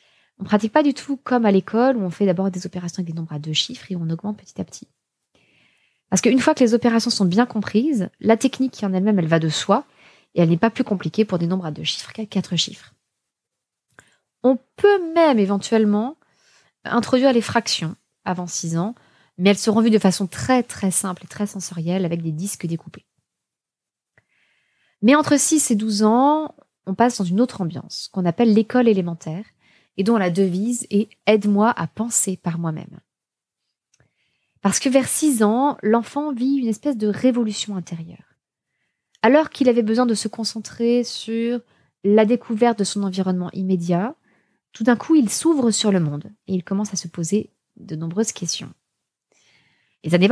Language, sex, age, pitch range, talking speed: French, female, 20-39, 185-235 Hz, 190 wpm